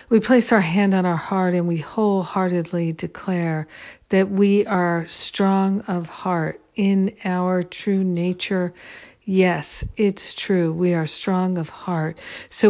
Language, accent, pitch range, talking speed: English, American, 175-205 Hz, 140 wpm